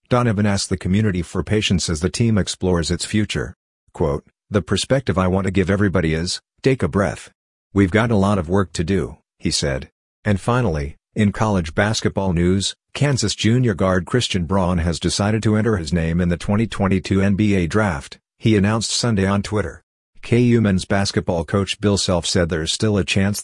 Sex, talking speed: male, 185 wpm